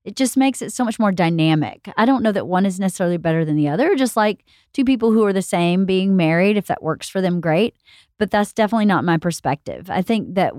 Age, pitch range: 40-59, 160-210 Hz